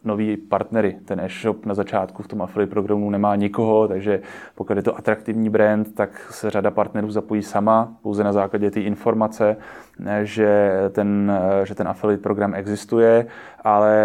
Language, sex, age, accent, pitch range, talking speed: Czech, male, 20-39, native, 100-115 Hz, 160 wpm